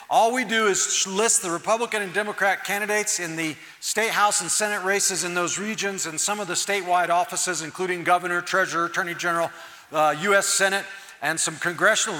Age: 40-59